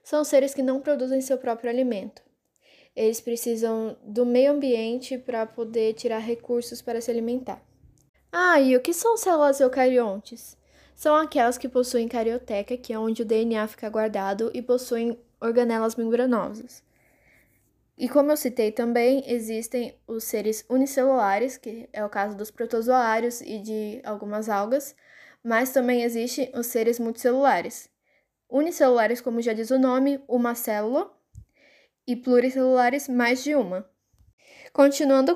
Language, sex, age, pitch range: Portuguese, female, 10-29, 225-265 Hz